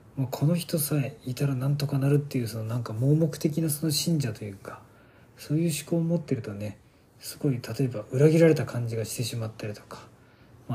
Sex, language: male, Japanese